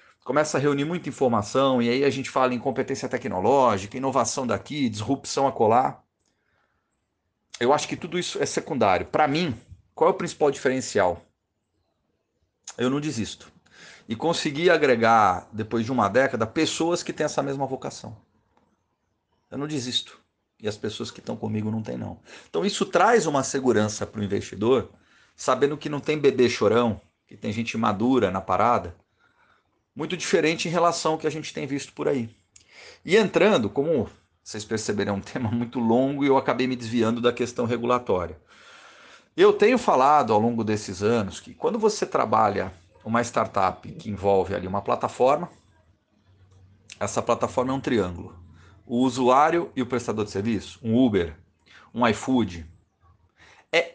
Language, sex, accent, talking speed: Portuguese, male, Brazilian, 160 wpm